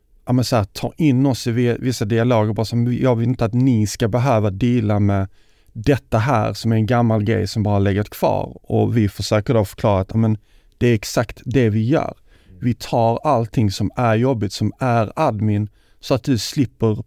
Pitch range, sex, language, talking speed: 105-130 Hz, male, Swedish, 195 wpm